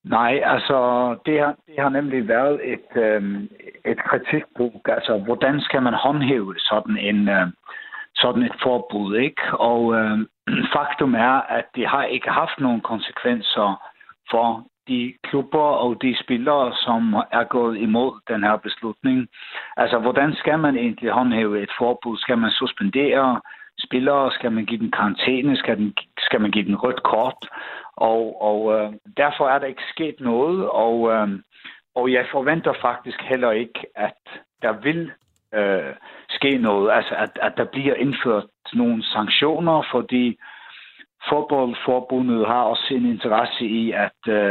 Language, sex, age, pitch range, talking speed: Danish, male, 60-79, 110-140 Hz, 145 wpm